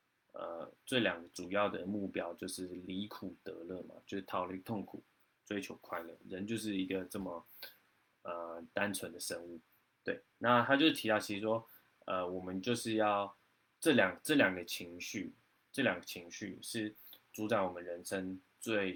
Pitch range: 90-105 Hz